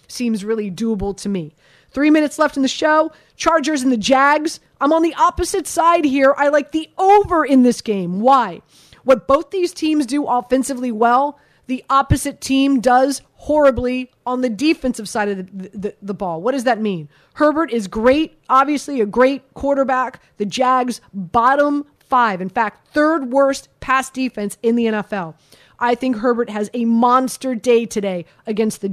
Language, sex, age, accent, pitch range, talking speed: English, female, 30-49, American, 210-275 Hz, 175 wpm